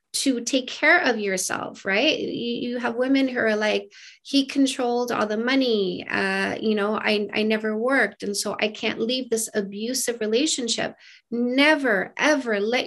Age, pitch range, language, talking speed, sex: 30-49, 215-255 Hz, English, 165 wpm, female